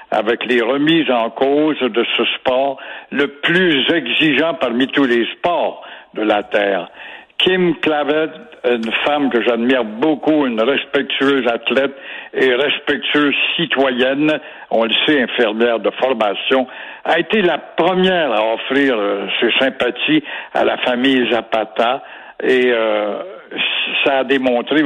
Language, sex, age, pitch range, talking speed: French, male, 60-79, 120-145 Hz, 135 wpm